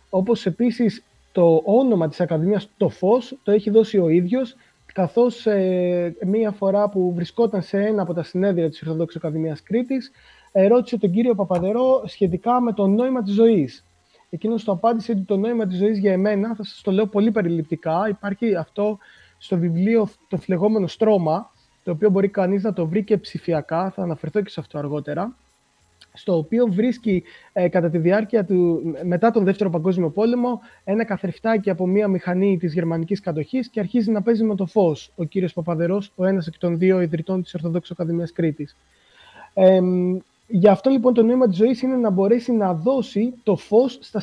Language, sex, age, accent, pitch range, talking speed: Greek, male, 20-39, native, 175-220 Hz, 180 wpm